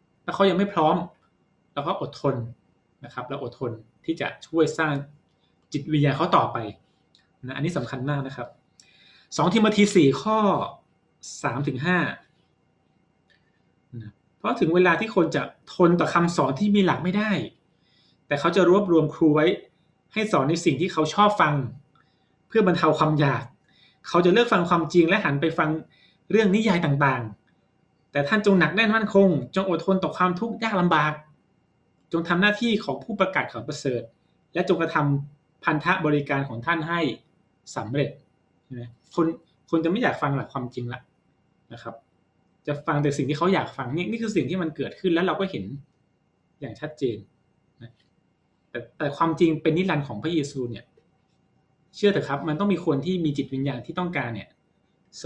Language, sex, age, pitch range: Thai, male, 20-39, 140-180 Hz